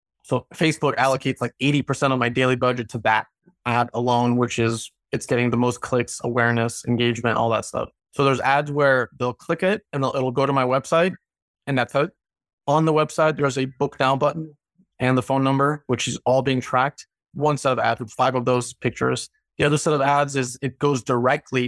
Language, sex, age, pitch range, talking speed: English, male, 30-49, 125-140 Hz, 215 wpm